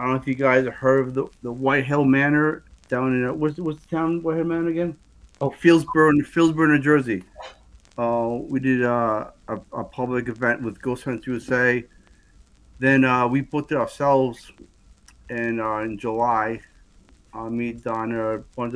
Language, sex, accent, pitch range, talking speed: English, male, American, 120-145 Hz, 180 wpm